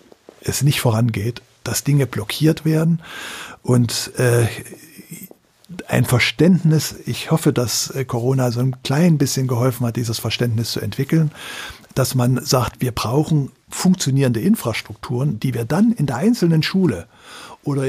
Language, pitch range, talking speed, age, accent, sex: German, 125-155 Hz, 135 wpm, 50-69, German, male